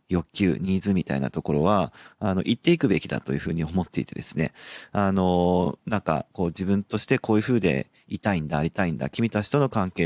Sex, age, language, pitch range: male, 40-59, Japanese, 85-115 Hz